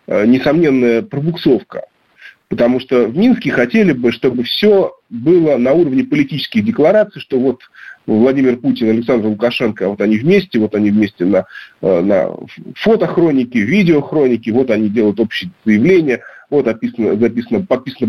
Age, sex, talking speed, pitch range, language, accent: 40-59, male, 125 wpm, 120-175 Hz, Russian, native